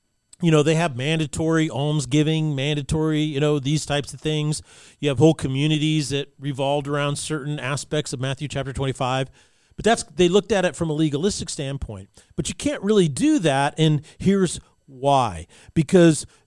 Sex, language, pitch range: male, English, 140-175 Hz